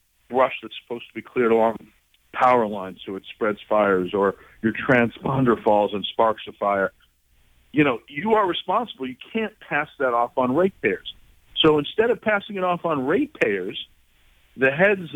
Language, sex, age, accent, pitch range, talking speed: English, male, 50-69, American, 110-150 Hz, 170 wpm